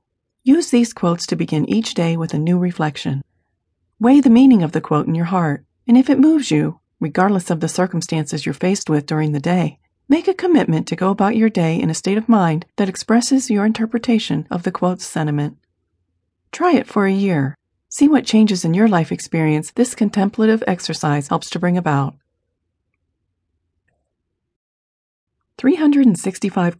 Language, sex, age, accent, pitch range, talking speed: English, female, 40-59, American, 140-220 Hz, 170 wpm